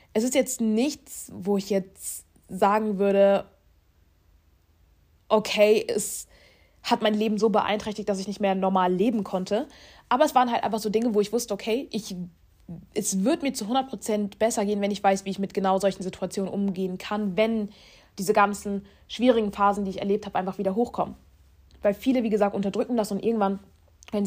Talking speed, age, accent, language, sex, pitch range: 180 wpm, 20-39, German, German, female, 190-220 Hz